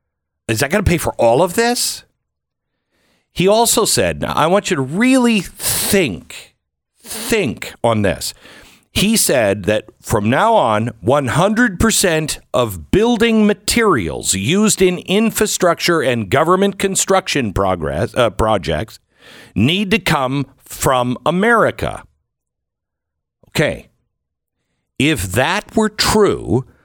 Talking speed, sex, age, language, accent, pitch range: 115 wpm, male, 50-69, English, American, 120-195 Hz